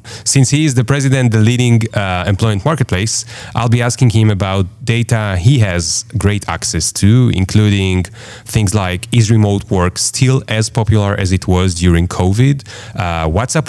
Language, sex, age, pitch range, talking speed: Hebrew, male, 30-49, 90-125 Hz, 170 wpm